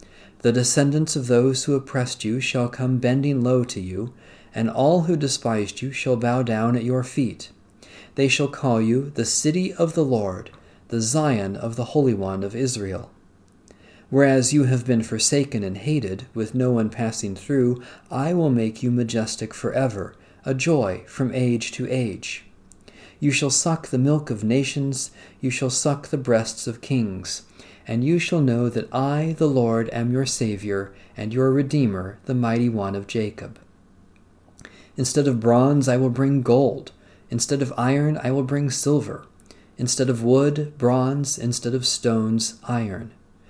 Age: 40-59